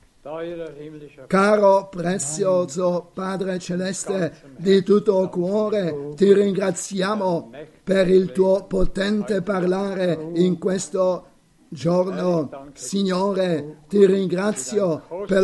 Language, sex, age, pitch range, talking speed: Italian, male, 50-69, 175-195 Hz, 80 wpm